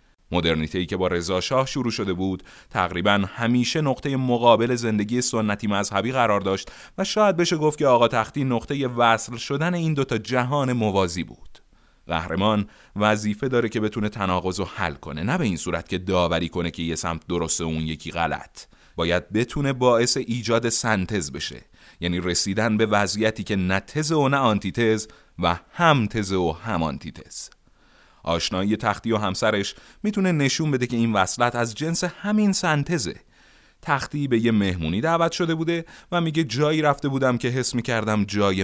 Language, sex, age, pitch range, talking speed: Persian, male, 30-49, 90-130 Hz, 170 wpm